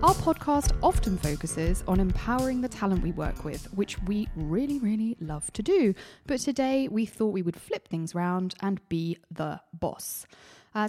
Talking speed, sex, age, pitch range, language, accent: 175 wpm, female, 20-39, 175-245 Hz, English, British